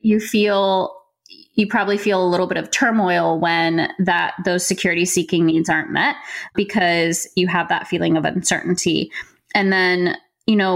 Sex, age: female, 20-39